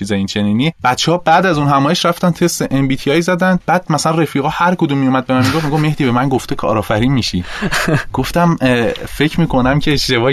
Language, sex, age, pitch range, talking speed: Persian, male, 30-49, 105-130 Hz, 210 wpm